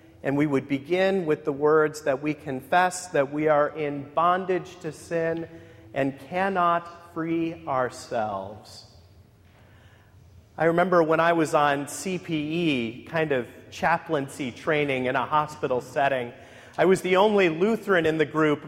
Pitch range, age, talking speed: 150-225 Hz, 40-59, 140 wpm